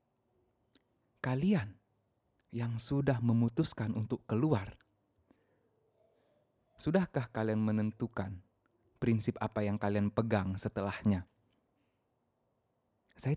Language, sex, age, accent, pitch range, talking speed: Indonesian, male, 20-39, native, 100-120 Hz, 70 wpm